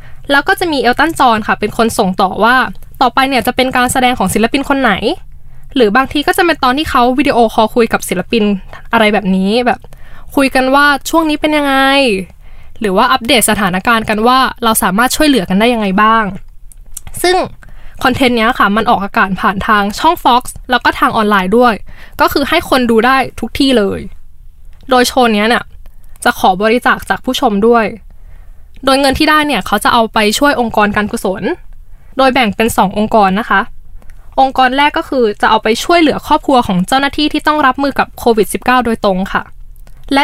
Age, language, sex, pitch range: 10-29, Thai, female, 210-275 Hz